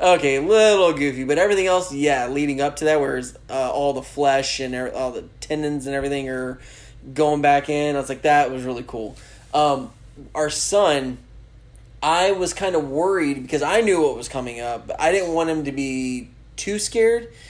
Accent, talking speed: American, 200 wpm